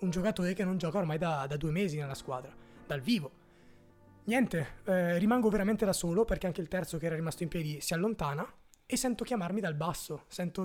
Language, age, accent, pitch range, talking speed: Italian, 20-39, native, 160-210 Hz, 210 wpm